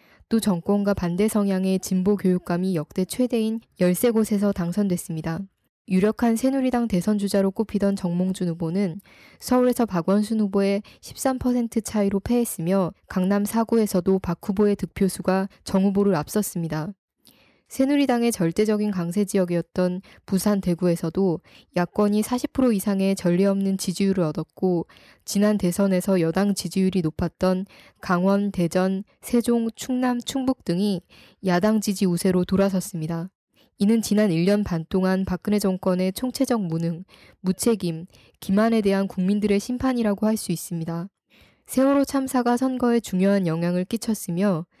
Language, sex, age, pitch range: Korean, female, 20-39, 180-215 Hz